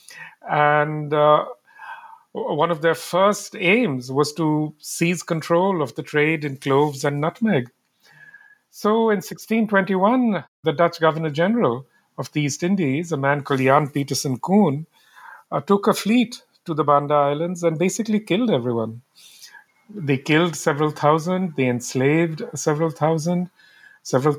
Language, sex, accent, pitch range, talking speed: English, male, Indian, 145-200 Hz, 140 wpm